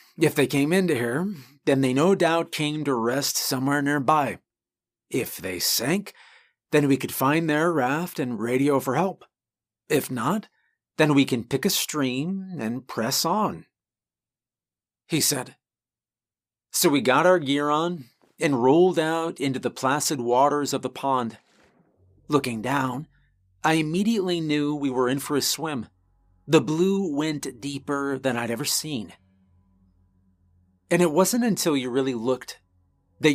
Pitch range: 120-155 Hz